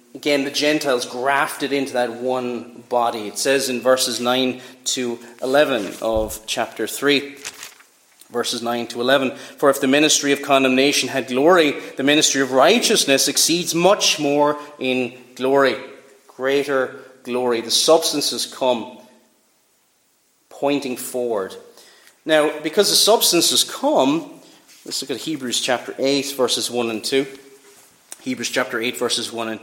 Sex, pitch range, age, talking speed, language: male, 130-195 Hz, 30-49, 135 wpm, English